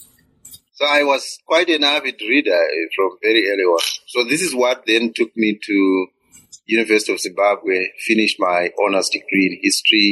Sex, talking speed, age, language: male, 170 wpm, 30-49, English